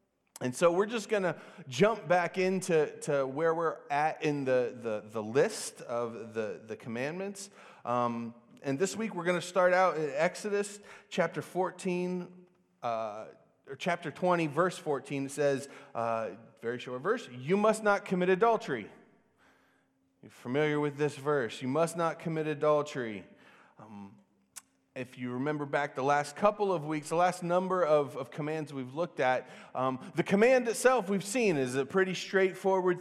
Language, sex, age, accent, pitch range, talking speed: English, male, 30-49, American, 135-185 Hz, 165 wpm